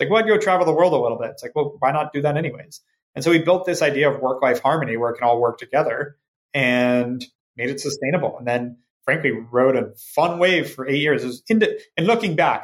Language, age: English, 30-49